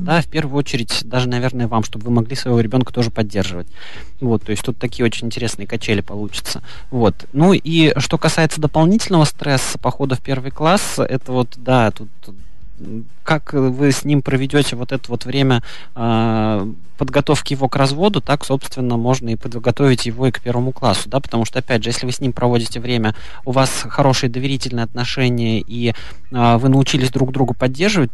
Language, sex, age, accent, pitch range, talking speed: Russian, male, 20-39, native, 115-135 Hz, 175 wpm